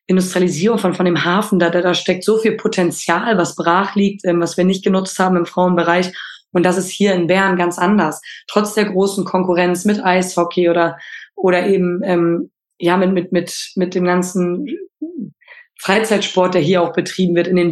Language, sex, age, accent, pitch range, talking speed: German, female, 20-39, German, 175-200 Hz, 175 wpm